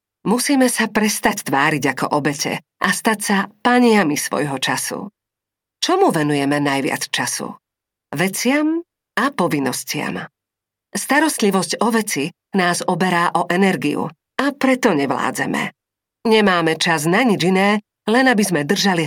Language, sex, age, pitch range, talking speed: Slovak, female, 40-59, 155-215 Hz, 120 wpm